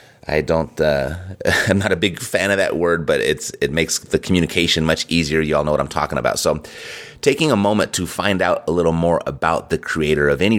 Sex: male